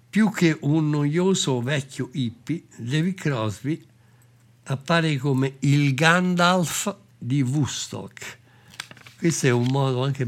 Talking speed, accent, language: 110 wpm, native, Italian